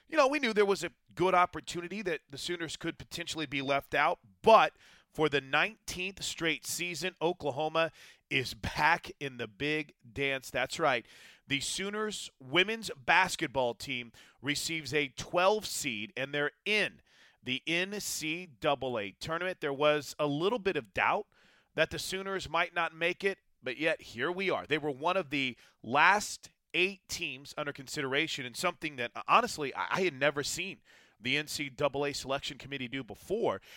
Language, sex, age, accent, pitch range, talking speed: English, male, 30-49, American, 135-175 Hz, 160 wpm